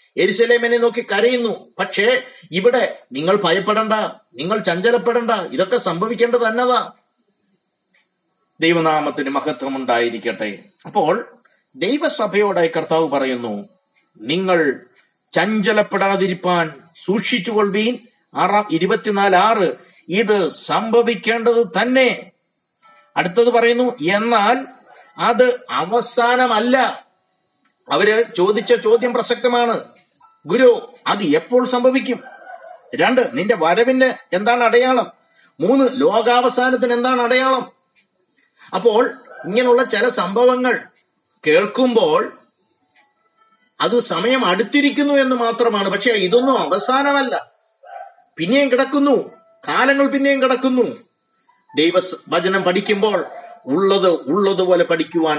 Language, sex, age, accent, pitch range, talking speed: Malayalam, male, 30-49, native, 195-255 Hz, 80 wpm